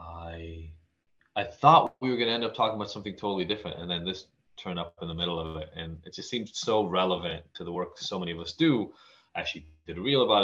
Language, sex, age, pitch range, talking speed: English, male, 30-49, 85-115 Hz, 245 wpm